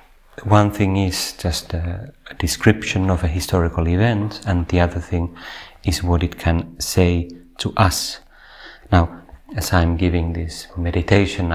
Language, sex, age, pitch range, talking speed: Finnish, male, 30-49, 85-100 Hz, 140 wpm